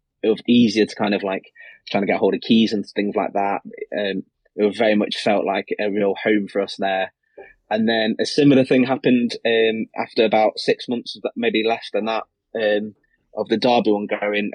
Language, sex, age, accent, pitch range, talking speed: English, male, 20-39, British, 105-120 Hz, 225 wpm